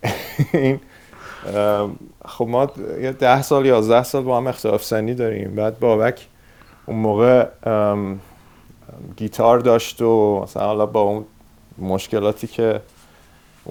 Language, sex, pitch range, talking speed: Persian, male, 100-125 Hz, 110 wpm